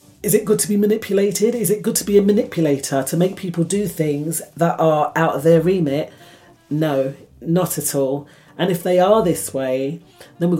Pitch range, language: 150-195 Hz, English